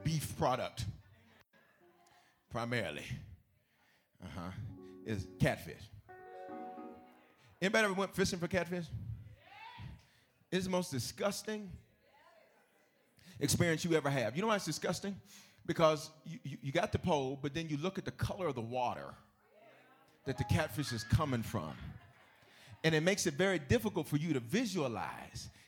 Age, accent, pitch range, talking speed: 40-59, American, 125-195 Hz, 135 wpm